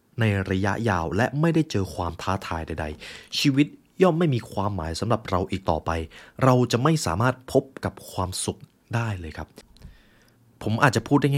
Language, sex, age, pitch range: Thai, male, 20-39, 95-125 Hz